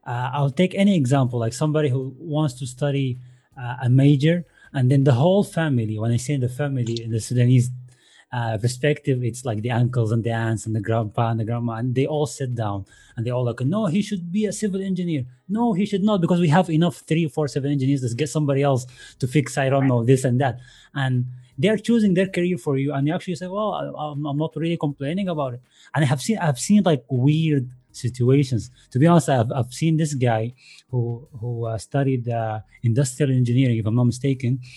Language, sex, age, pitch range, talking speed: English, male, 30-49, 120-160 Hz, 225 wpm